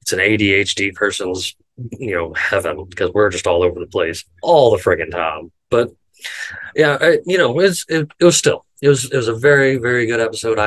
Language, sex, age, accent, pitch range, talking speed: English, male, 30-49, American, 95-120 Hz, 200 wpm